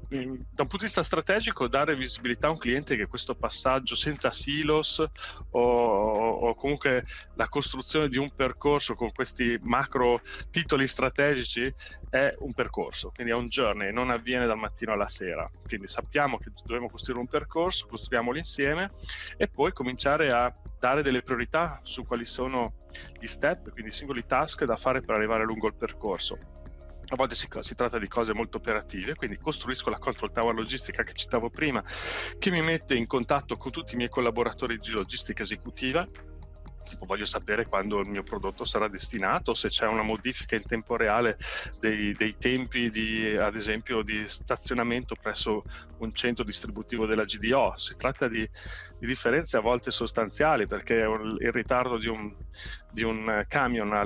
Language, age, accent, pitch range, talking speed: Italian, 30-49, native, 110-130 Hz, 165 wpm